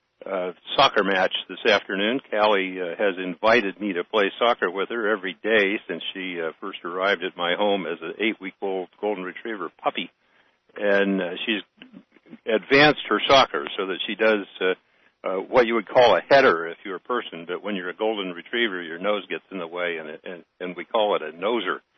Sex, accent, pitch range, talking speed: male, American, 90-110 Hz, 200 wpm